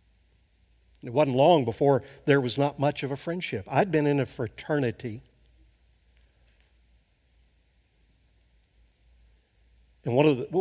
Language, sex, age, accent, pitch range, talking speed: English, male, 60-79, American, 105-145 Hz, 105 wpm